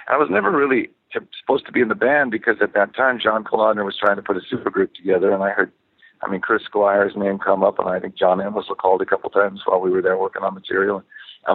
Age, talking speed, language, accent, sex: 50-69, 270 wpm, English, American, male